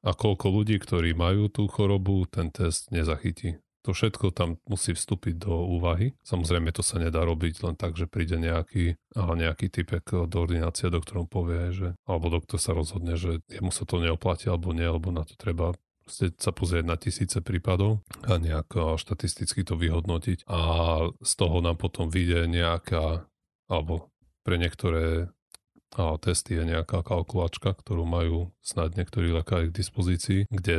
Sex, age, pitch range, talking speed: male, 30-49, 85-95 Hz, 170 wpm